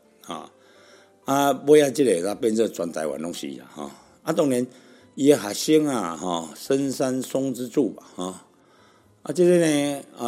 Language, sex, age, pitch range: Chinese, male, 60-79, 85-125 Hz